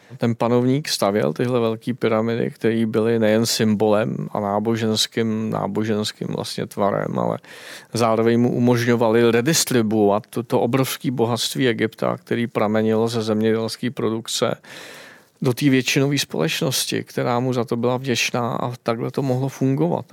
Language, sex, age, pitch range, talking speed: Czech, male, 40-59, 110-125 Hz, 130 wpm